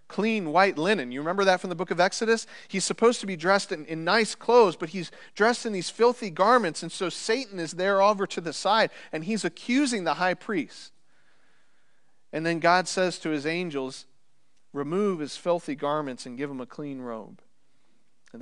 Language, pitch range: English, 160-210 Hz